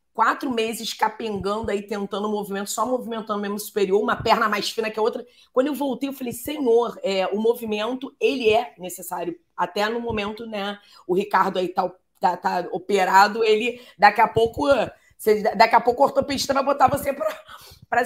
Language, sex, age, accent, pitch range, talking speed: Portuguese, female, 20-39, Brazilian, 195-235 Hz, 185 wpm